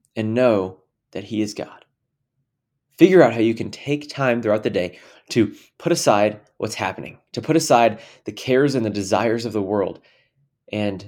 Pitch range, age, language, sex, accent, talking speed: 105-130 Hz, 20-39, English, male, American, 180 wpm